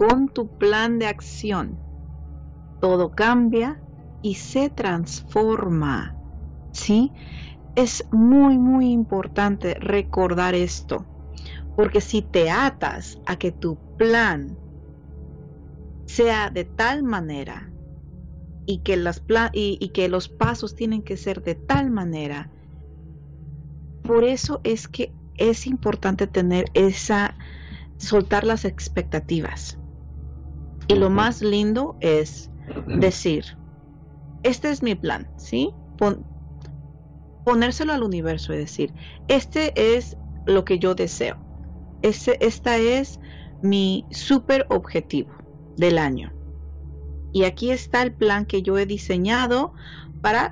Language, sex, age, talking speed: Spanish, female, 40-59, 115 wpm